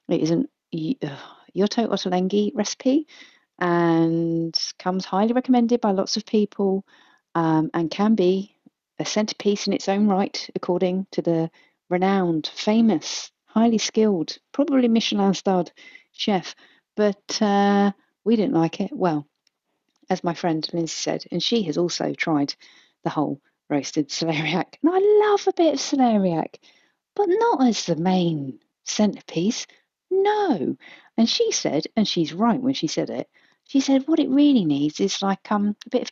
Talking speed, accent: 150 wpm, British